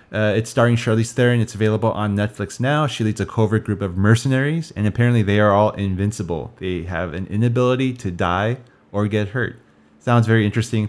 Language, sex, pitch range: English, male, 100-125 Hz